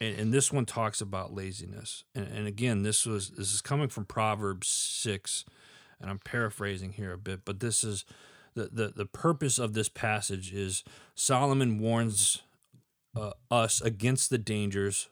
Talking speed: 160 wpm